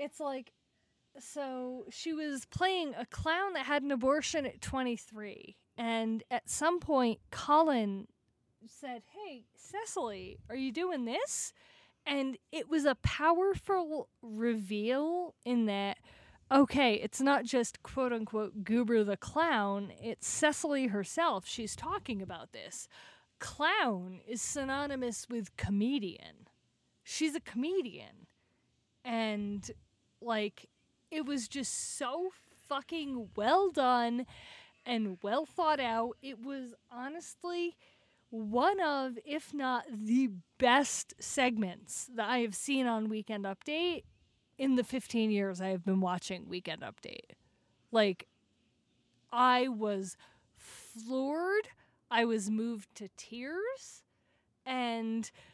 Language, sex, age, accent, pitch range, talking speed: English, female, 30-49, American, 220-290 Hz, 115 wpm